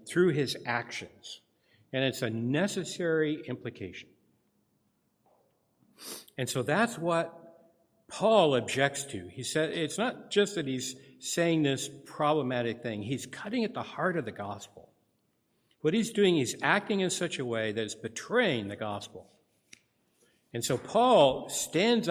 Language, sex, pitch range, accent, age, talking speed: English, male, 110-155 Hz, American, 60-79, 140 wpm